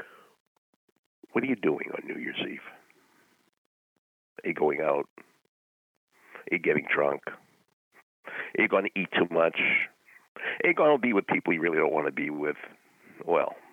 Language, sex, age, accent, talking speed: English, male, 60-79, American, 165 wpm